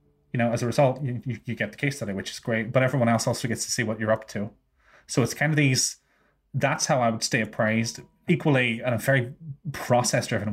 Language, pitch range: English, 110-130 Hz